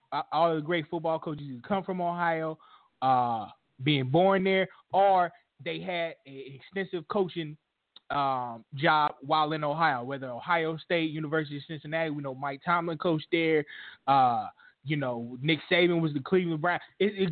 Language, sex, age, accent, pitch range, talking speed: English, male, 20-39, American, 140-170 Hz, 165 wpm